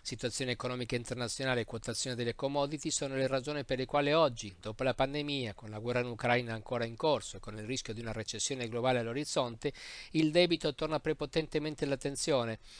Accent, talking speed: native, 185 wpm